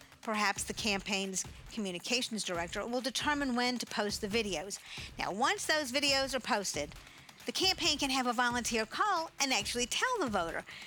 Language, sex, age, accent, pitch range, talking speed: English, female, 50-69, American, 210-280 Hz, 165 wpm